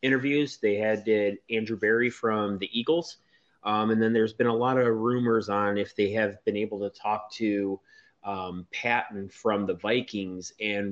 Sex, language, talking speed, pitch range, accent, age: male, English, 180 wpm, 100-110 Hz, American, 30-49